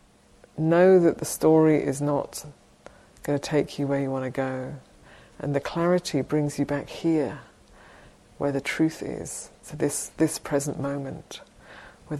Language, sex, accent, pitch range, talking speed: English, female, British, 135-150 Hz, 155 wpm